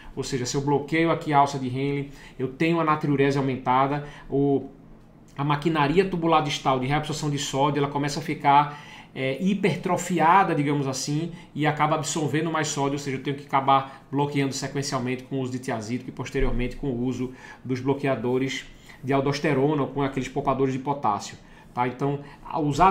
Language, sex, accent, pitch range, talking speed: Portuguese, male, Brazilian, 135-155 Hz, 180 wpm